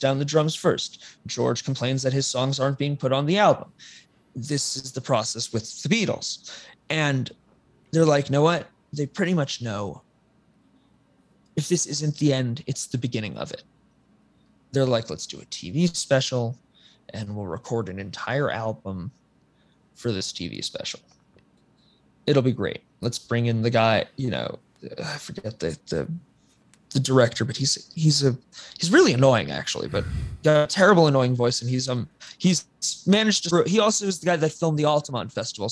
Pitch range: 115-150 Hz